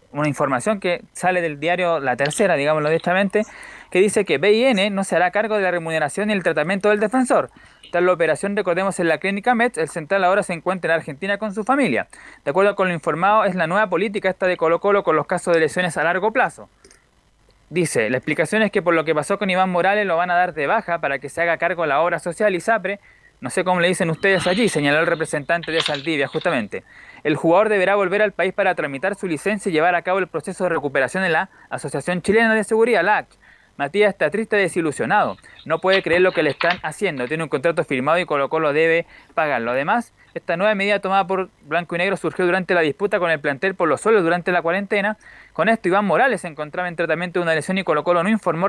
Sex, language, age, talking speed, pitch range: male, Spanish, 20-39, 235 wpm, 165-200 Hz